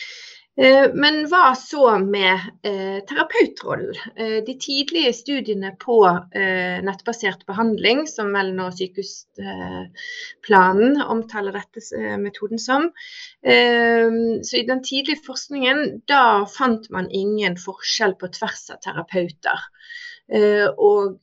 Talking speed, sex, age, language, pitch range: 95 wpm, female, 30-49, English, 195-275 Hz